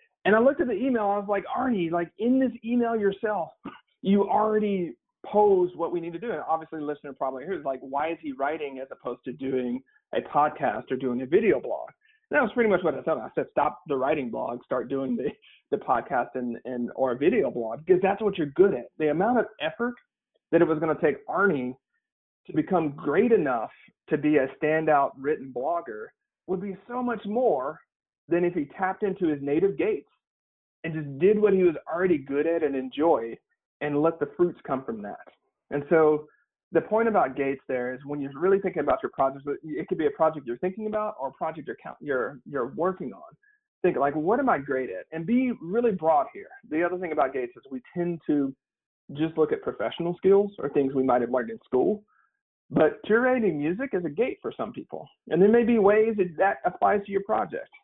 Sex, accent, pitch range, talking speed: male, American, 145-225 Hz, 220 wpm